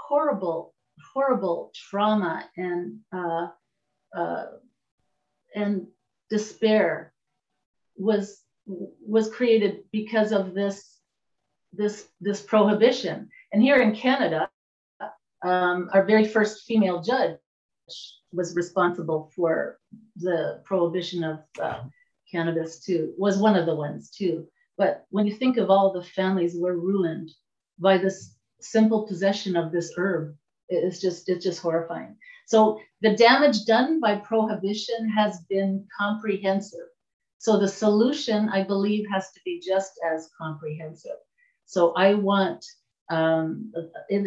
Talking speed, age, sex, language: 120 wpm, 40-59, female, English